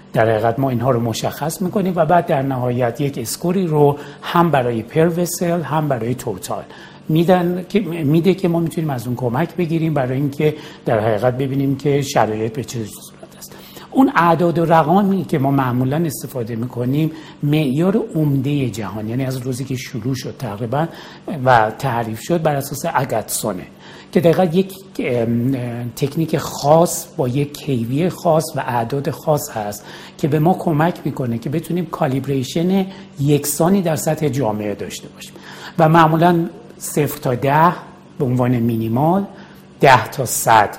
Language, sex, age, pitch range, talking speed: Persian, male, 60-79, 125-170 Hz, 150 wpm